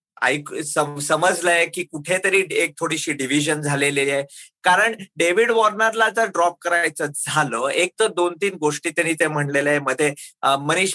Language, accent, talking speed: Marathi, native, 155 wpm